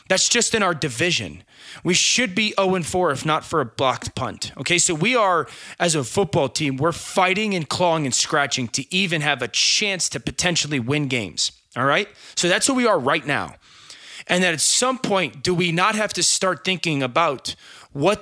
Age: 20-39